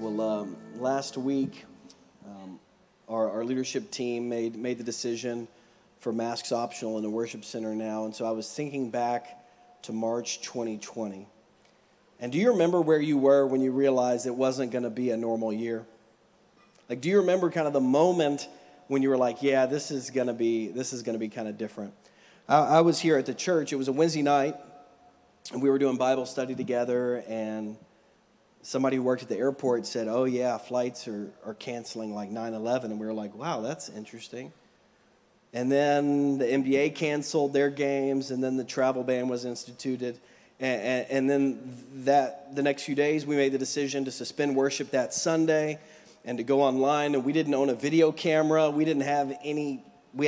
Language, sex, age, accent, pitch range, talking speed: English, male, 40-59, American, 120-145 Hz, 195 wpm